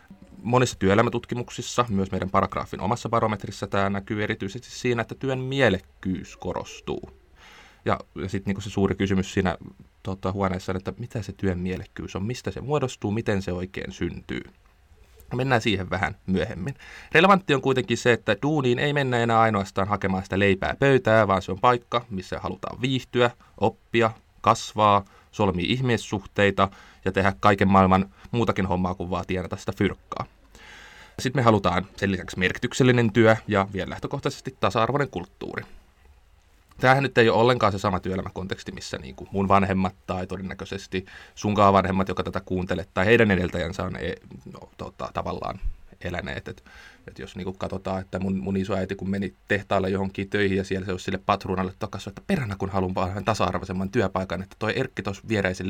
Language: Finnish